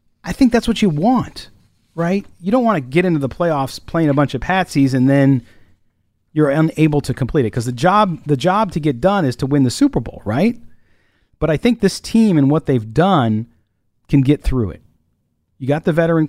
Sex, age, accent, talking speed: male, 40-59, American, 215 wpm